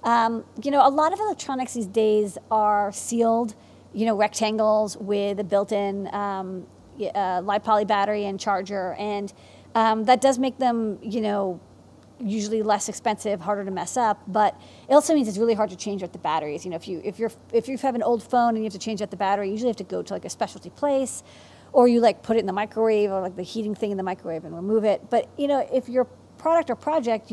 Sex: female